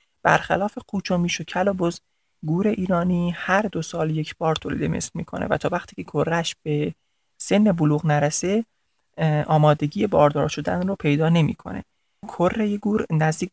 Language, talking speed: Persian, 140 wpm